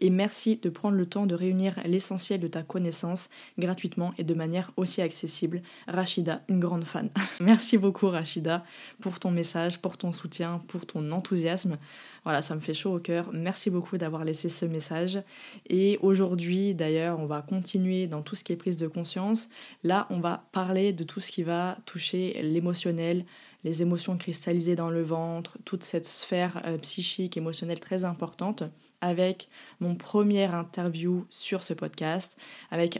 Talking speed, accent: 170 wpm, French